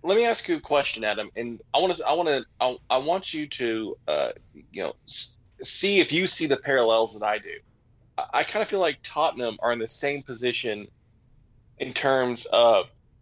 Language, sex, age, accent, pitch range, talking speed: English, male, 20-39, American, 115-135 Hz, 210 wpm